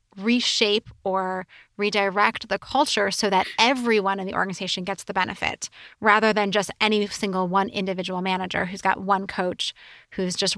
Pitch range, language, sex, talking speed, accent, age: 190-225 Hz, English, female, 160 wpm, American, 20-39